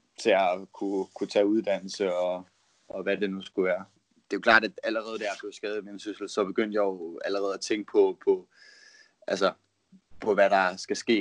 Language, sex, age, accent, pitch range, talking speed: Danish, male, 20-39, native, 95-110 Hz, 210 wpm